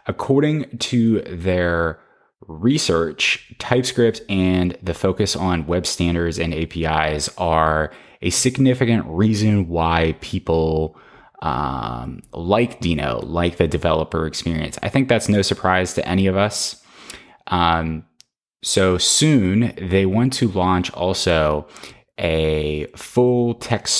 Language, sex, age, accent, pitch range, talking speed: English, male, 20-39, American, 85-110 Hz, 115 wpm